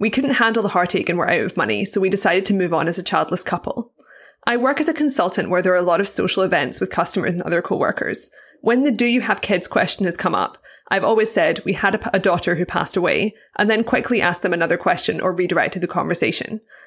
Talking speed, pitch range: 250 wpm, 180-225 Hz